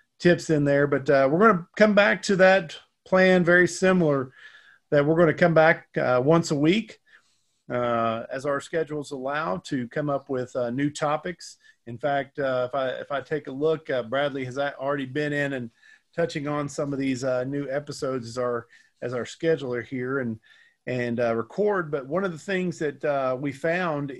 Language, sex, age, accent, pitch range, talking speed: English, male, 40-59, American, 130-160 Hz, 200 wpm